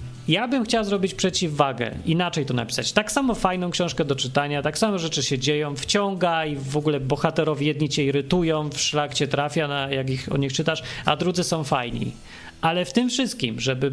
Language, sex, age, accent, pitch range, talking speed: Polish, male, 40-59, native, 145-195 Hz, 195 wpm